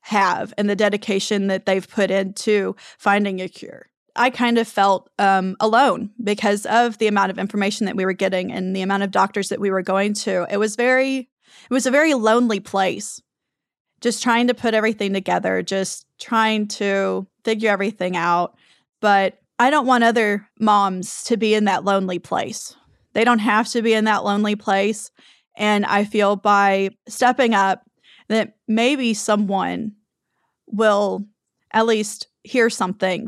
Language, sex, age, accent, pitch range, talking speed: English, female, 20-39, American, 195-230 Hz, 170 wpm